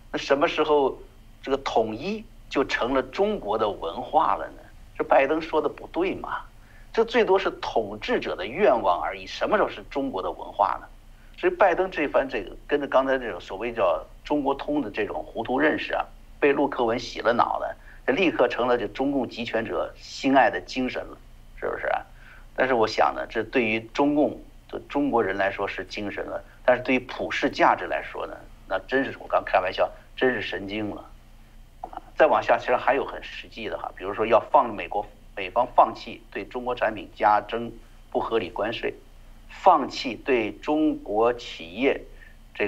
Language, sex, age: Chinese, male, 50-69